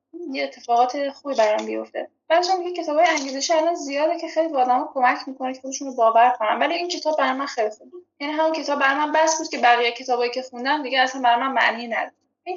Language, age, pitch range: Persian, 10-29, 235-310 Hz